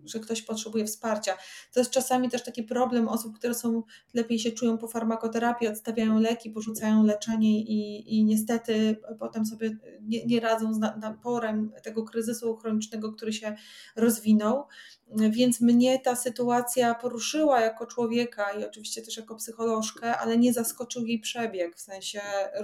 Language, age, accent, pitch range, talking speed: Polish, 30-49, native, 215-245 Hz, 150 wpm